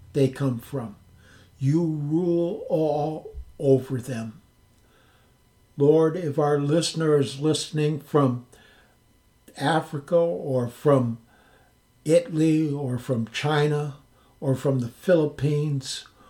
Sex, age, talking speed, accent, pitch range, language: male, 60-79, 95 wpm, American, 125-160 Hz, English